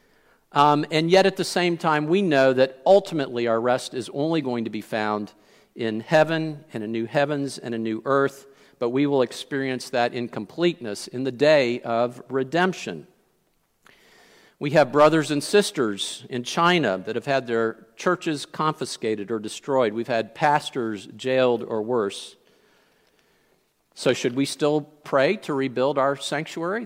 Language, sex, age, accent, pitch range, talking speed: English, male, 50-69, American, 120-150 Hz, 155 wpm